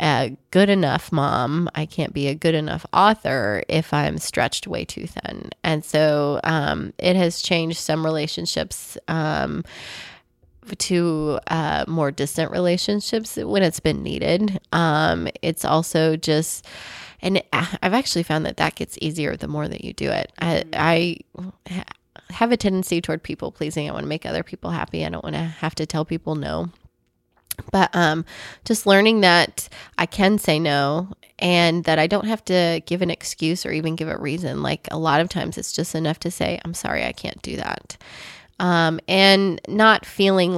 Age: 20-39